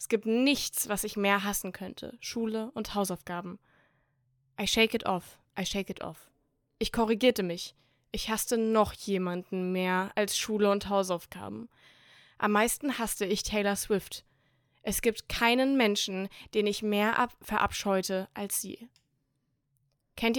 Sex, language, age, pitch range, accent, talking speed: female, German, 20-39, 185-220 Hz, German, 140 wpm